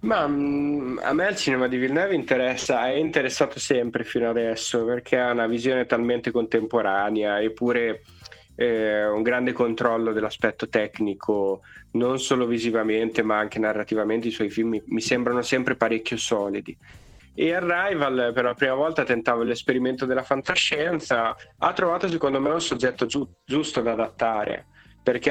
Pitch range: 110-130 Hz